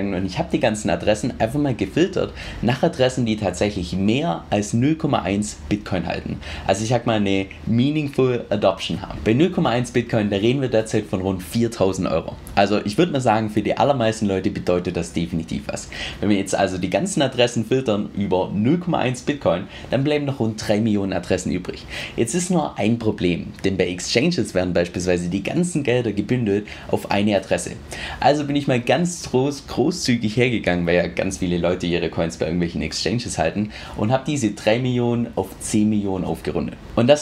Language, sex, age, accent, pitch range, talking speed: German, male, 30-49, German, 95-130 Hz, 185 wpm